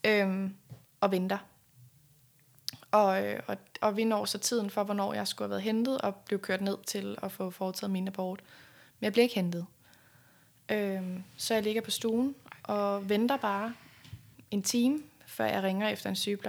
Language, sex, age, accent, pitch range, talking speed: Danish, female, 20-39, native, 180-220 Hz, 180 wpm